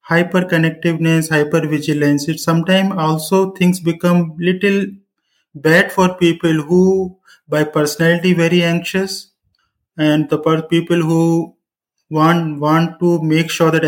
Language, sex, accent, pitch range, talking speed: English, male, Indian, 155-185 Hz, 110 wpm